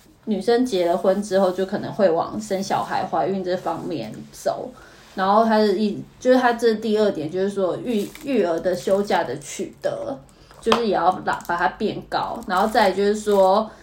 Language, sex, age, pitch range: Chinese, female, 20-39, 180-220 Hz